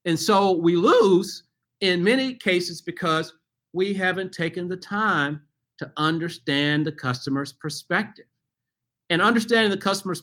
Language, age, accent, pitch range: English, 50-69, American, 145-195 Hz